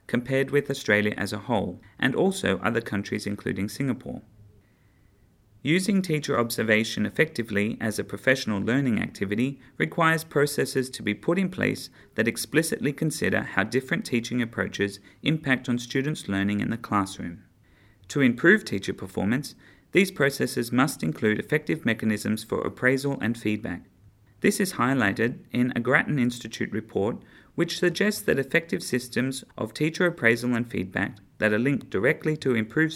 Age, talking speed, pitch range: 30-49, 145 wpm, 105-140 Hz